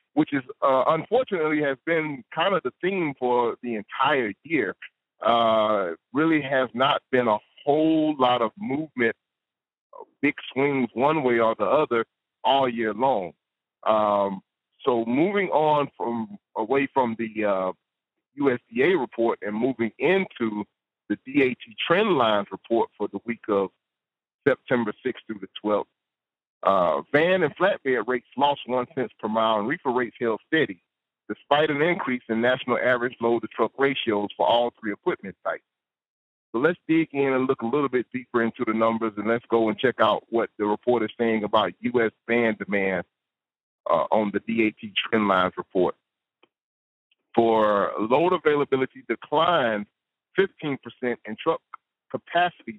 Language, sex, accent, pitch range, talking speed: English, male, American, 110-150 Hz, 150 wpm